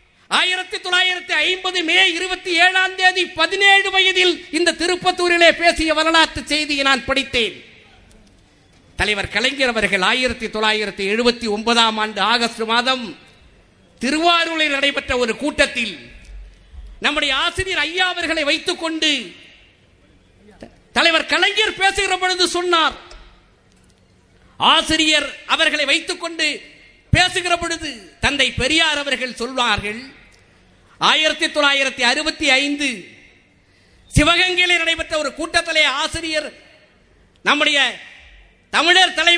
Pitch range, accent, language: 260-345 Hz, native, Tamil